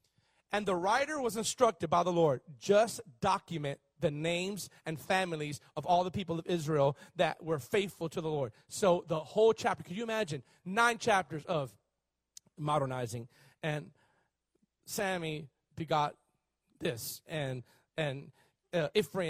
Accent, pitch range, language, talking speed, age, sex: American, 150-210 Hz, English, 135 wpm, 40-59, male